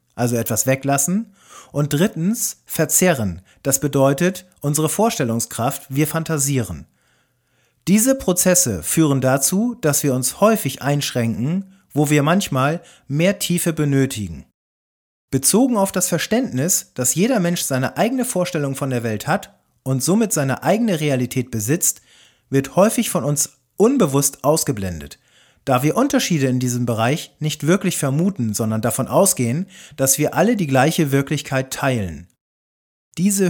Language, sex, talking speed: German, male, 130 wpm